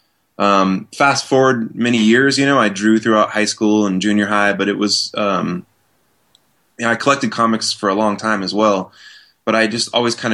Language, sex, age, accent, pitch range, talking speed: English, male, 20-39, American, 95-115 Hz, 205 wpm